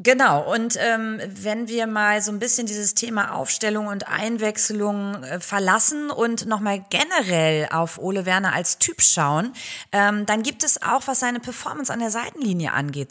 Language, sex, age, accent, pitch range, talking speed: German, female, 30-49, German, 185-235 Hz, 170 wpm